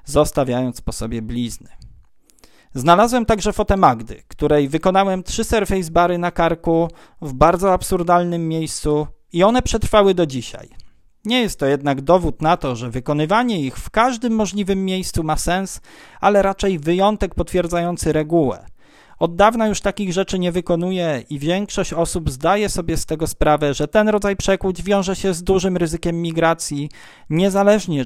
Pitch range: 145-195 Hz